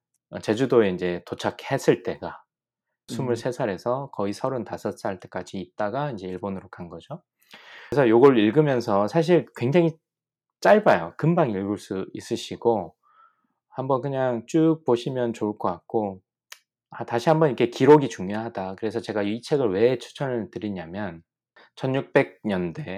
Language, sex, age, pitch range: Korean, male, 20-39, 95-120 Hz